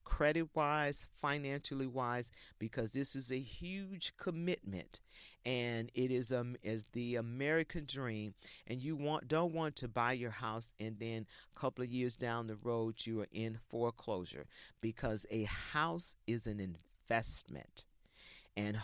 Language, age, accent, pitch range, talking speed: English, 50-69, American, 105-140 Hz, 145 wpm